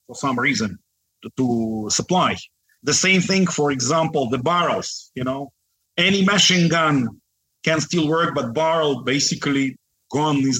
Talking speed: 145 wpm